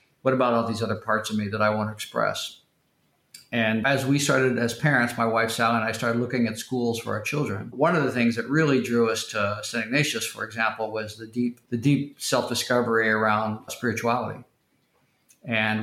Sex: male